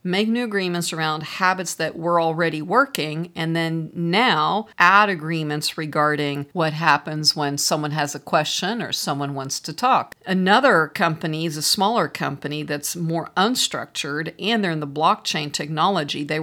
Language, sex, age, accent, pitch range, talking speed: English, female, 50-69, American, 160-205 Hz, 155 wpm